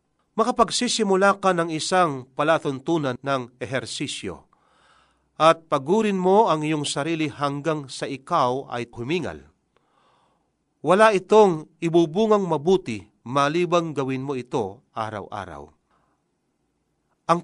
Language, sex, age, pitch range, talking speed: Filipino, male, 40-59, 130-170 Hz, 95 wpm